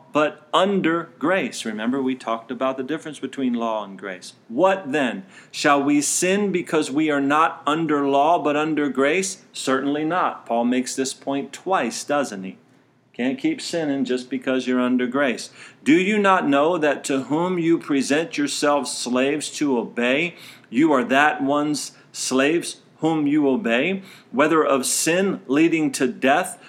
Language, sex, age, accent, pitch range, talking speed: English, male, 50-69, American, 130-170 Hz, 160 wpm